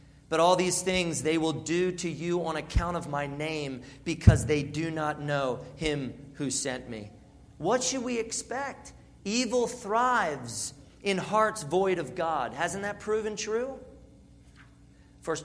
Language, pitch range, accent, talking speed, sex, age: English, 135-185 Hz, American, 150 wpm, male, 40-59